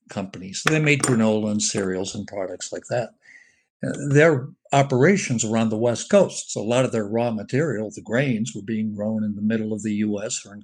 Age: 60-79